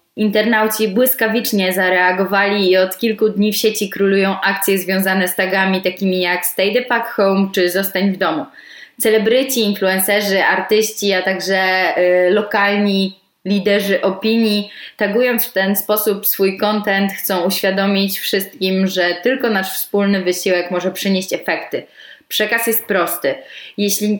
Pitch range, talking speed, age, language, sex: 190-210 Hz, 135 wpm, 20-39, Polish, female